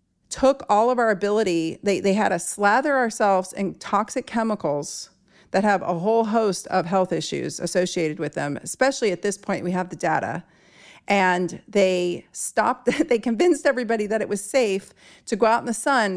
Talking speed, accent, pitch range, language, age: 180 wpm, American, 175-225 Hz, English, 40-59